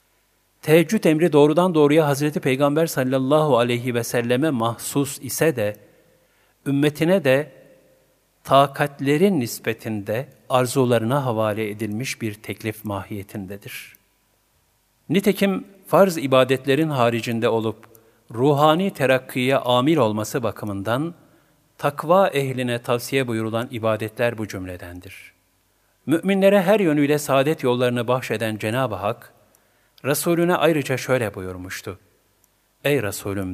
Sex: male